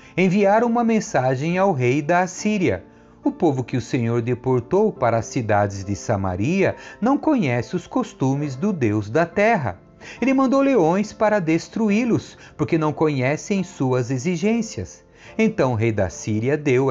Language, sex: Portuguese, male